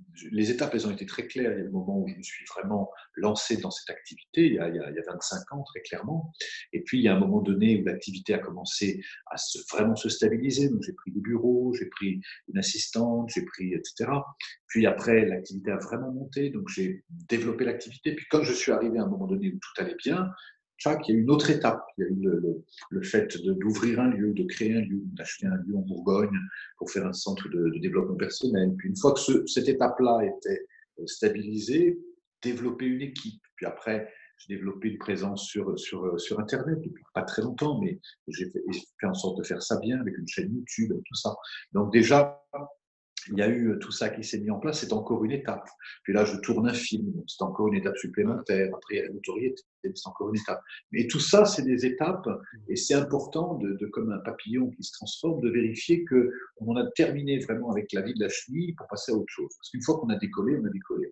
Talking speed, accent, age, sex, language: 235 wpm, French, 50-69, male, French